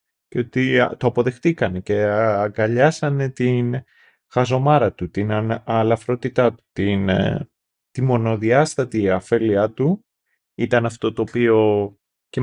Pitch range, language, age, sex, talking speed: 110-145 Hz, Greek, 30-49, male, 100 wpm